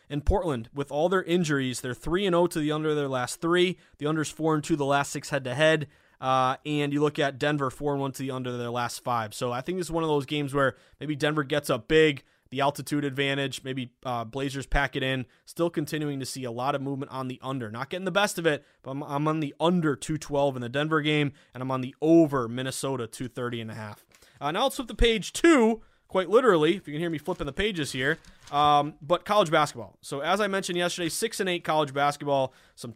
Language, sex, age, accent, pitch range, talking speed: English, male, 20-39, American, 130-170 Hz, 245 wpm